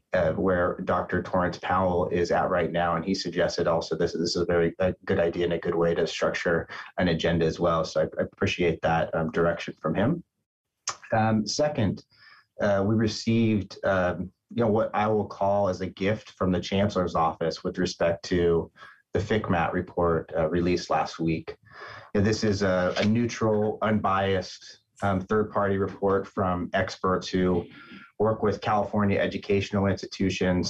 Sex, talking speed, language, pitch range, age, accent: male, 170 wpm, English, 85-100 Hz, 30-49, American